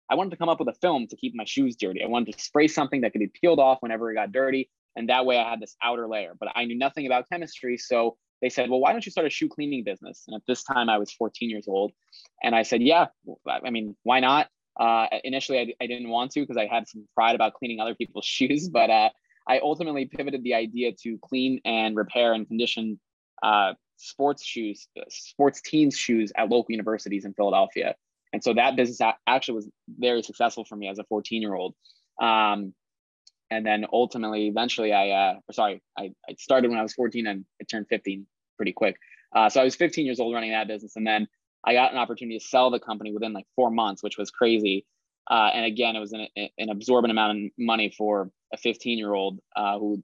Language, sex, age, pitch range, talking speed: English, male, 20-39, 105-125 Hz, 235 wpm